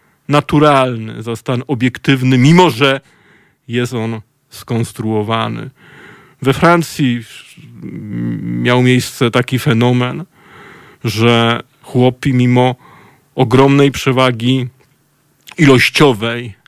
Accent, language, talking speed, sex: native, Polish, 75 wpm, male